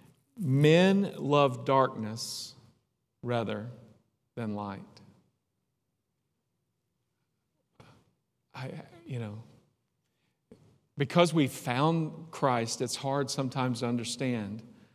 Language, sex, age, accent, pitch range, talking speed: English, male, 40-59, American, 120-145 Hz, 70 wpm